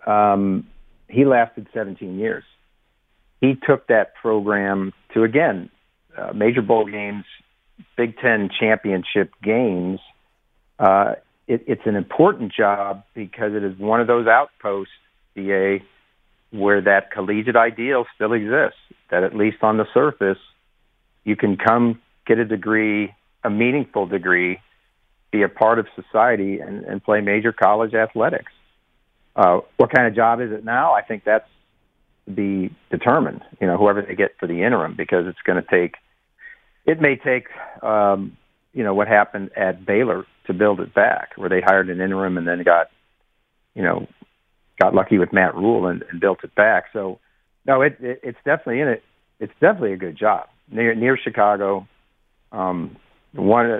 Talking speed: 160 wpm